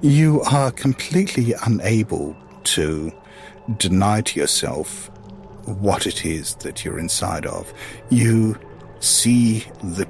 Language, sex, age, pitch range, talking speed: English, male, 50-69, 90-120 Hz, 105 wpm